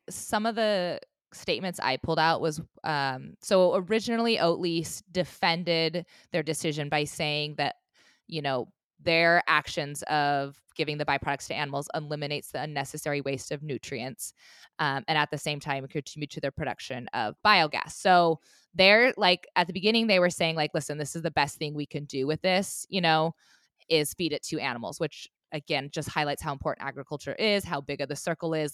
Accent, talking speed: American, 185 wpm